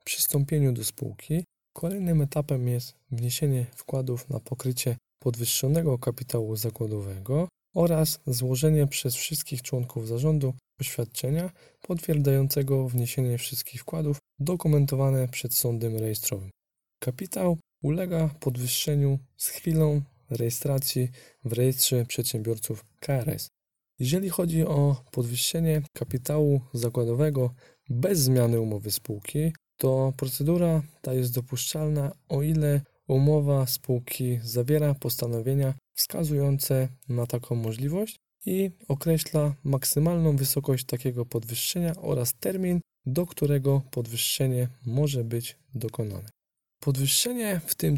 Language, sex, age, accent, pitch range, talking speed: Polish, male, 20-39, native, 125-155 Hz, 100 wpm